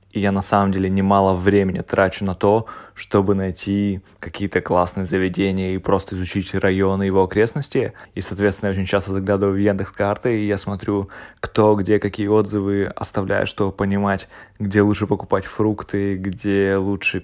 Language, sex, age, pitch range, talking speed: Russian, male, 20-39, 95-105 Hz, 155 wpm